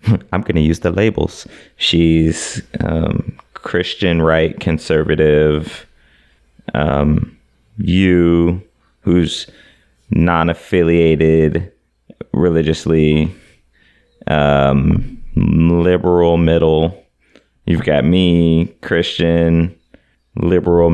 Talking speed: 70 wpm